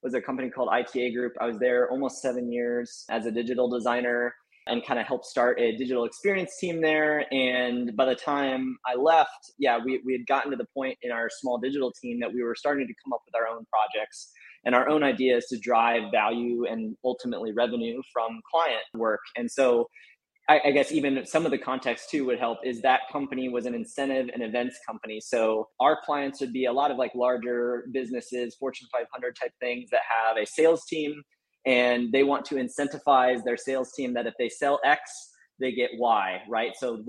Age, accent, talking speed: 20-39, American, 205 wpm